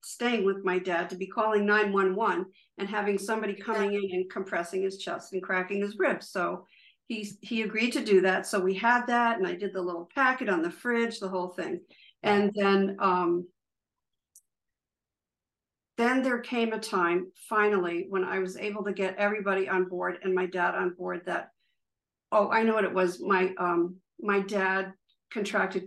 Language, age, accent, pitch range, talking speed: English, 50-69, American, 185-220 Hz, 185 wpm